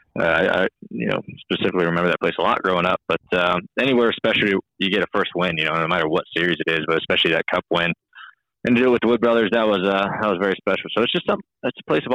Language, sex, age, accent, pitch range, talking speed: English, male, 20-39, American, 90-110 Hz, 290 wpm